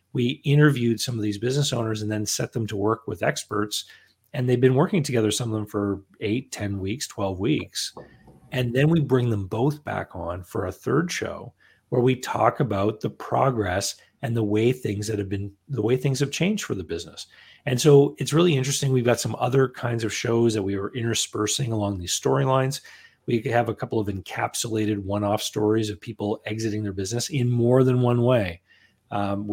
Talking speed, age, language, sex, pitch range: 205 wpm, 40-59, English, male, 105-130 Hz